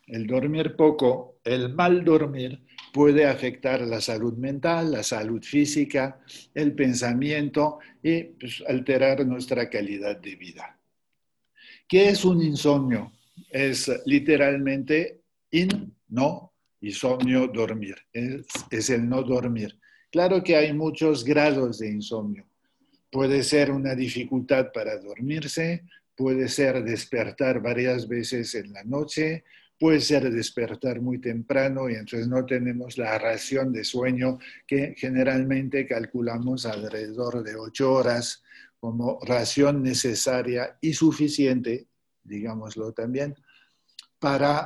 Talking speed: 115 wpm